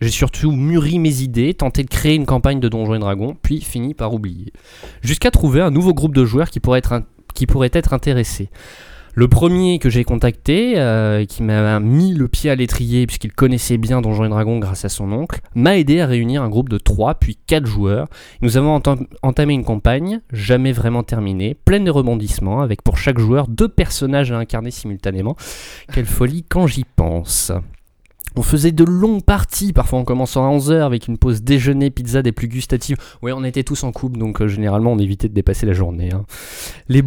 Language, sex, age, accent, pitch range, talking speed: French, male, 20-39, French, 105-135 Hz, 200 wpm